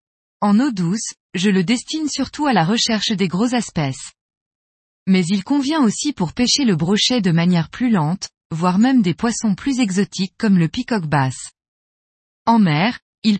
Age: 20-39